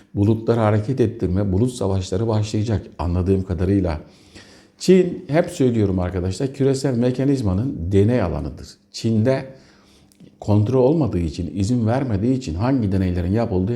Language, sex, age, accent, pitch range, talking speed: Turkish, male, 60-79, native, 95-120 Hz, 115 wpm